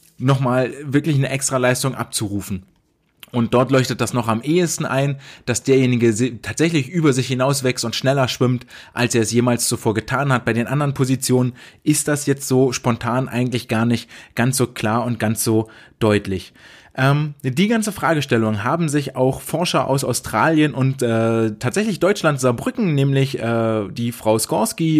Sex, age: male, 20-39